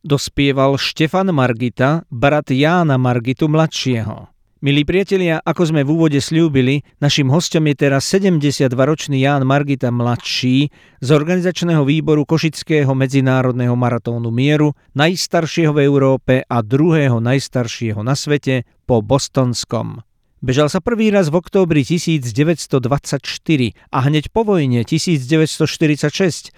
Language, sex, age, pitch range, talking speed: Slovak, male, 50-69, 130-165 Hz, 115 wpm